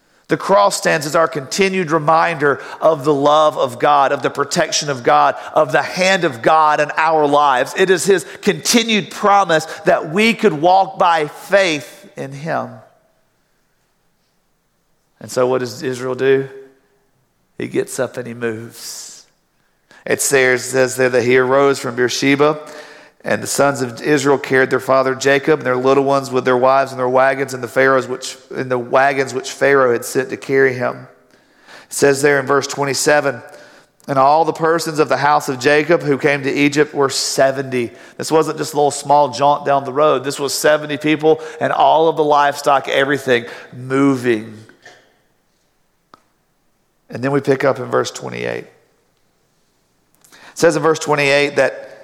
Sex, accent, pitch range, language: male, American, 130-155 Hz, English